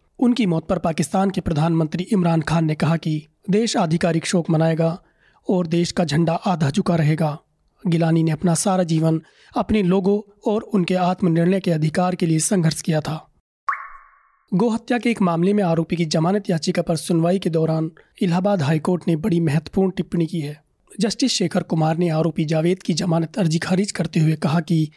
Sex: male